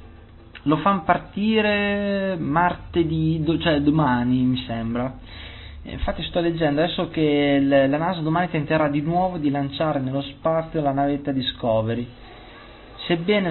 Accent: native